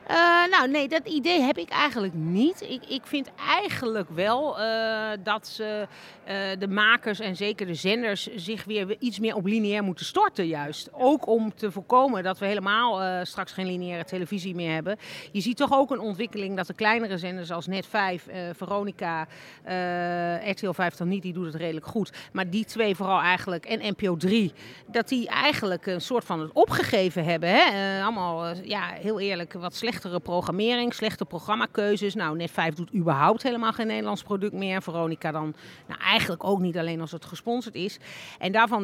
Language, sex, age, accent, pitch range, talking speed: Dutch, female, 40-59, Dutch, 175-220 Hz, 185 wpm